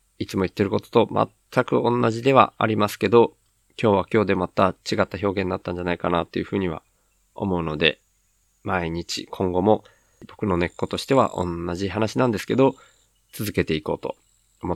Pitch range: 95-110 Hz